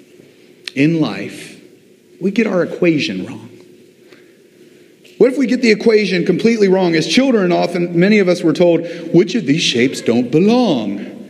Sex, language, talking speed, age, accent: male, English, 155 wpm, 40-59, American